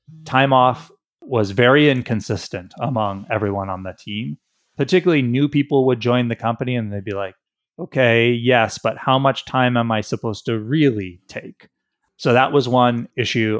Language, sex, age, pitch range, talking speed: English, male, 30-49, 110-135 Hz, 170 wpm